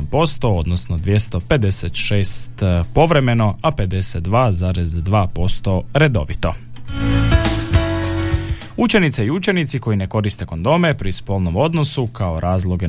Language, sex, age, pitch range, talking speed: Croatian, male, 30-49, 95-125 Hz, 85 wpm